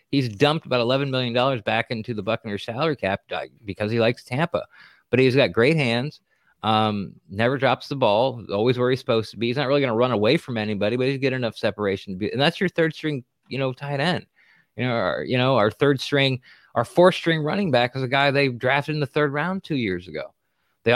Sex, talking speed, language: male, 240 wpm, English